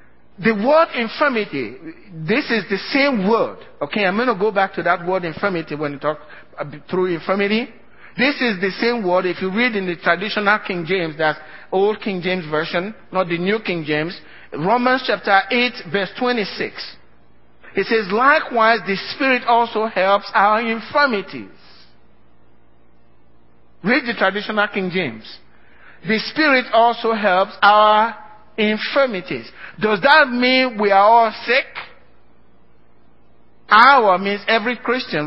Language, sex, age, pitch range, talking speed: English, male, 50-69, 185-230 Hz, 140 wpm